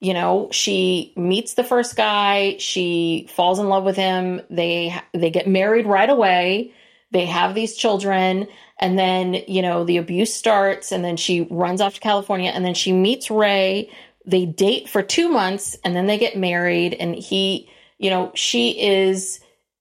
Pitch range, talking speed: 180-215 Hz, 175 wpm